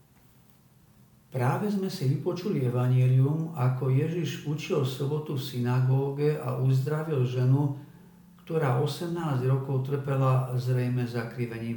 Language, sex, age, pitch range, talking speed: Slovak, male, 50-69, 130-160 Hz, 100 wpm